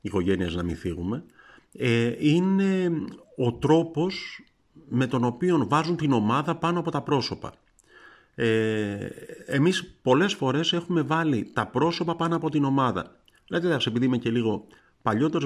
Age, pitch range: 50-69, 110-150 Hz